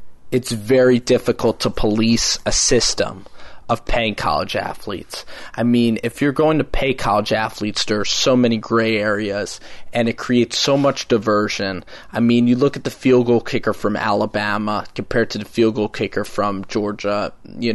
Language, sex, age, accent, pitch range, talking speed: English, male, 20-39, American, 115-130 Hz, 175 wpm